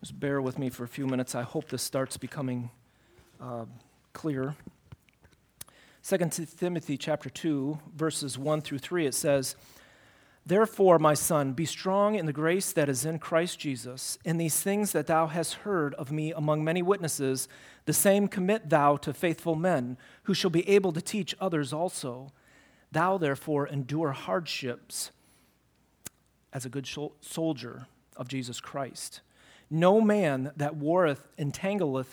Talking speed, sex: 150 wpm, male